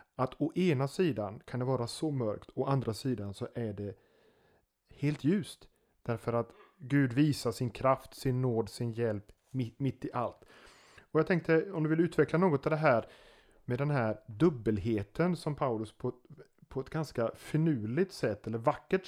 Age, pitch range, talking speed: 30-49, 115-145 Hz, 175 wpm